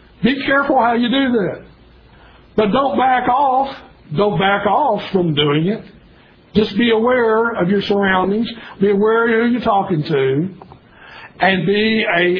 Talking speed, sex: 155 wpm, male